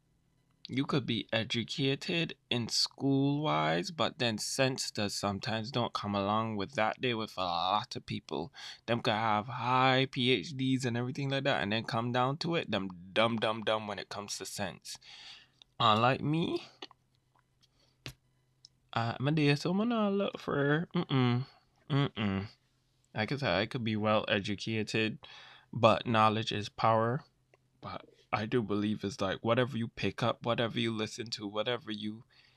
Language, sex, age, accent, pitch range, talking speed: English, male, 20-39, American, 105-130 Hz, 155 wpm